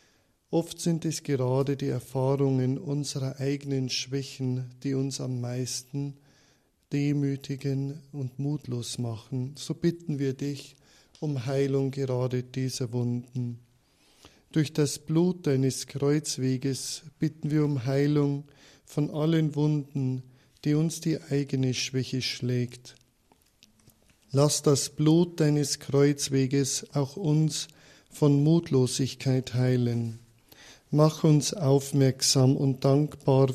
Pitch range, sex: 130-145 Hz, male